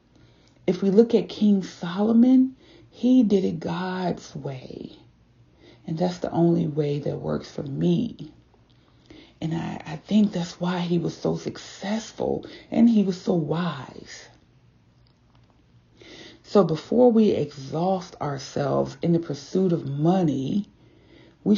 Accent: American